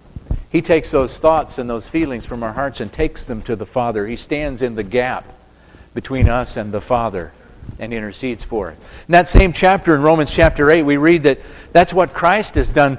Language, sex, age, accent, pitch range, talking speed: English, male, 50-69, American, 120-165 Hz, 215 wpm